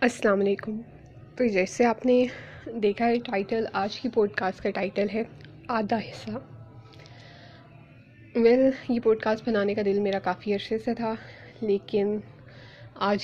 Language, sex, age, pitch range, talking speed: Urdu, female, 10-29, 145-235 Hz, 135 wpm